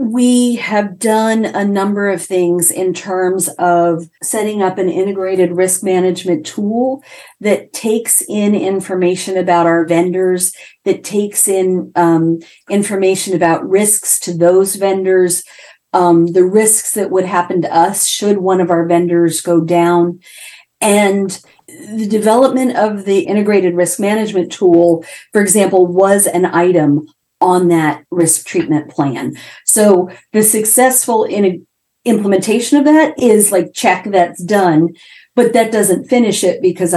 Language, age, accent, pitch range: English, 50-69, American, 170-205 Hz